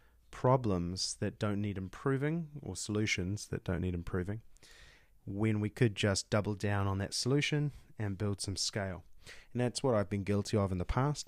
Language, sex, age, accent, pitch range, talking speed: English, male, 20-39, Australian, 95-120 Hz, 180 wpm